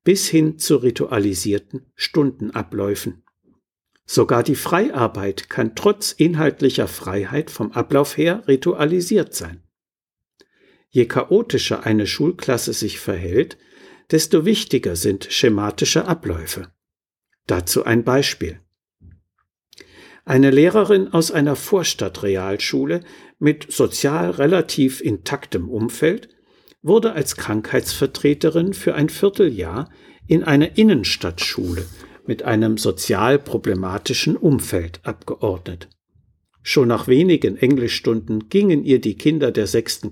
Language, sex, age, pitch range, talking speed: German, male, 60-79, 105-160 Hz, 100 wpm